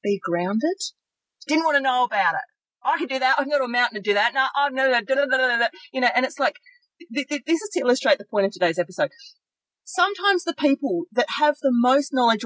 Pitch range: 205-295 Hz